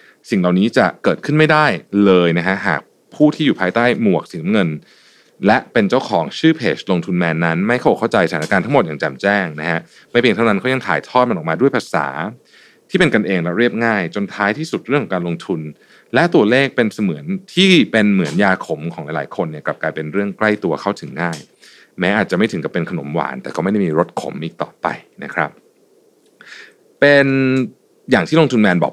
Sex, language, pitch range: male, Thai, 90-135 Hz